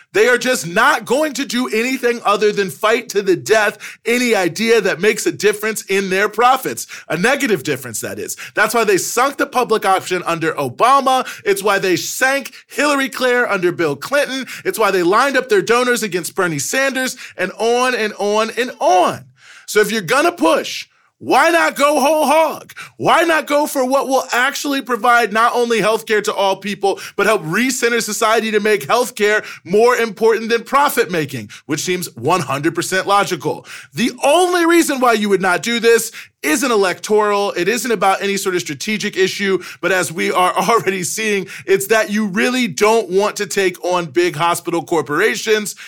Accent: American